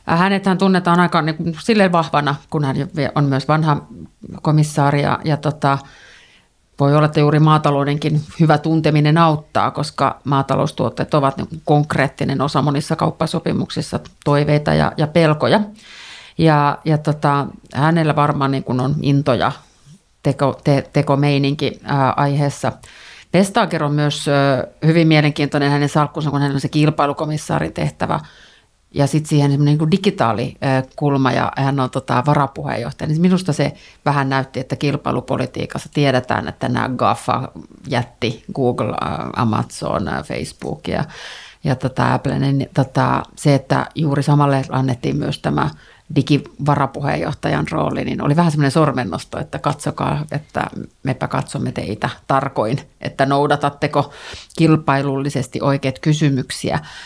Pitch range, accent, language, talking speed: 135-155 Hz, native, Finnish, 125 wpm